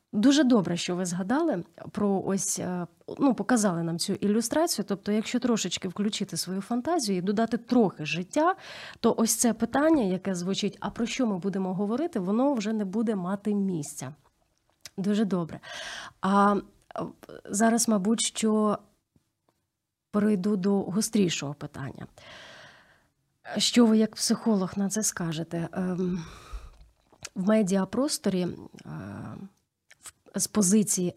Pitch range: 175-220 Hz